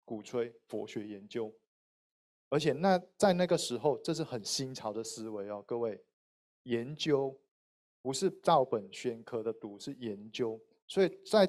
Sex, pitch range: male, 115-160 Hz